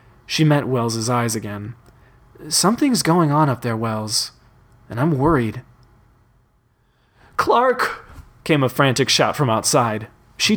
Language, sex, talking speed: English, male, 125 wpm